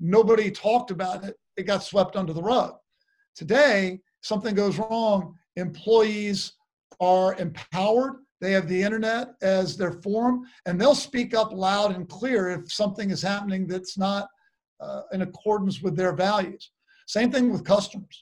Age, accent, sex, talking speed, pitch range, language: 50-69, American, male, 155 wpm, 190-235 Hz, English